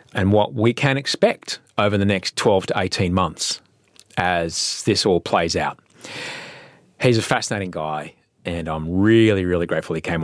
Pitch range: 90-125 Hz